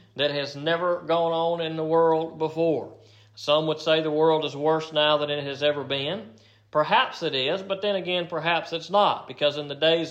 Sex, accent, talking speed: male, American, 210 wpm